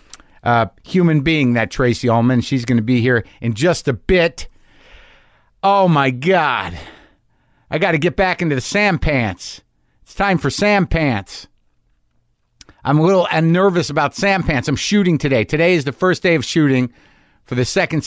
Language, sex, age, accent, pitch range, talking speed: English, male, 50-69, American, 115-160 Hz, 175 wpm